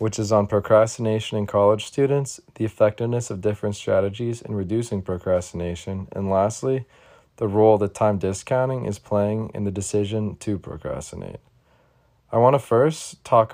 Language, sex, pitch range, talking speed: English, male, 95-115 Hz, 145 wpm